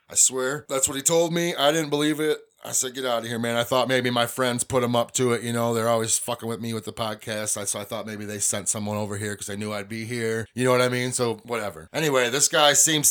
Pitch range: 115-140 Hz